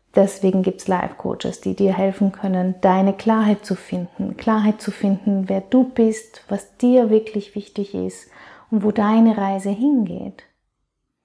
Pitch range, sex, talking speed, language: 195-230 Hz, female, 155 wpm, German